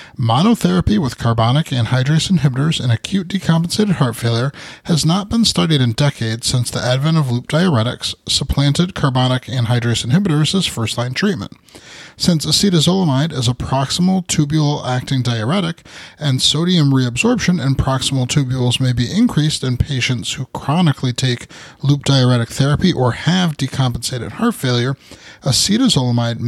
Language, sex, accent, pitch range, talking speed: English, male, American, 125-175 Hz, 140 wpm